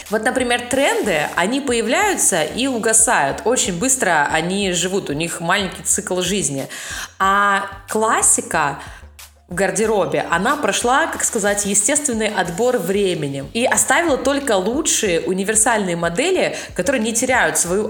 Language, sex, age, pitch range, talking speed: Russian, female, 20-39, 185-240 Hz, 125 wpm